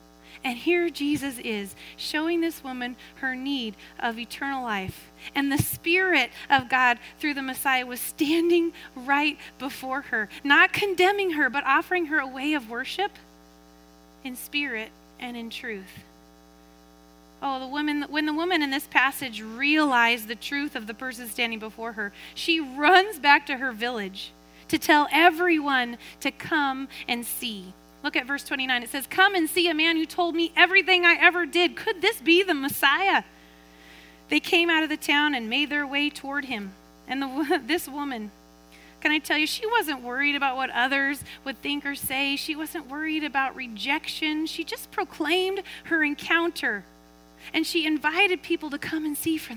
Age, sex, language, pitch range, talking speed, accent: 30-49, female, English, 240-320 Hz, 170 wpm, American